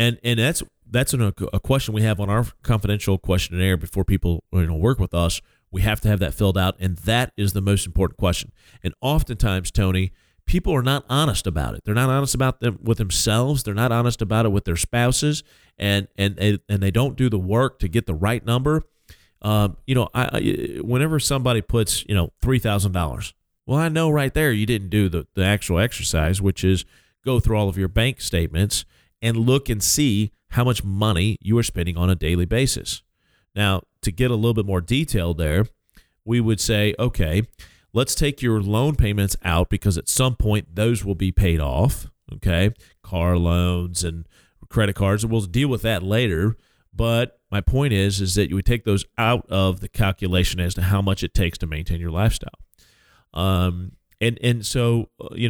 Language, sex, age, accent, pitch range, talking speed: English, male, 40-59, American, 95-120 Hz, 200 wpm